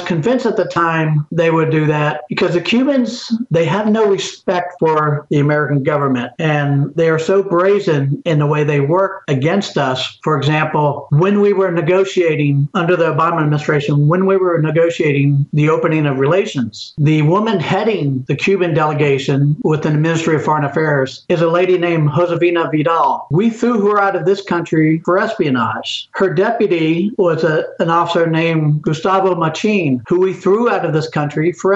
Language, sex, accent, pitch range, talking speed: English, male, American, 150-190 Hz, 175 wpm